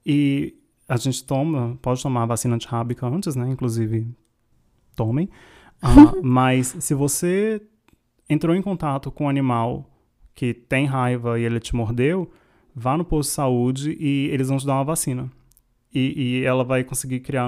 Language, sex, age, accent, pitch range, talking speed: Portuguese, male, 20-39, Brazilian, 130-185 Hz, 165 wpm